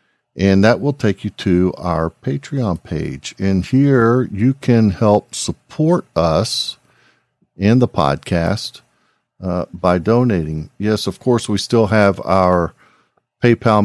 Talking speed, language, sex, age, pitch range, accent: 130 wpm, English, male, 50-69, 90-120 Hz, American